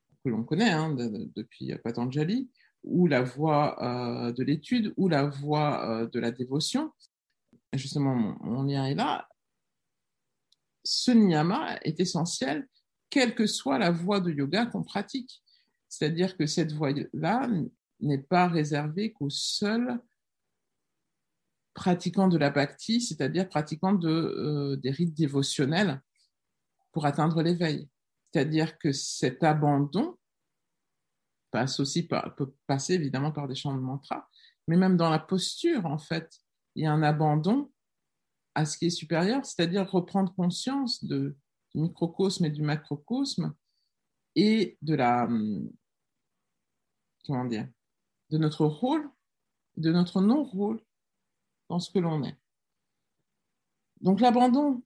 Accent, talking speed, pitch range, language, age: French, 130 wpm, 145-200 Hz, French, 50-69